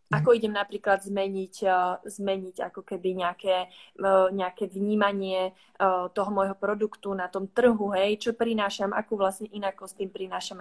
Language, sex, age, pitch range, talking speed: Slovak, female, 20-39, 195-235 Hz, 135 wpm